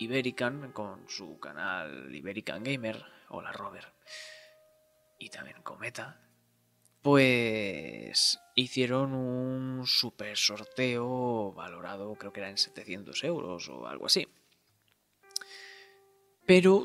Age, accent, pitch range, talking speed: 20-39, Spanish, 110-145 Hz, 95 wpm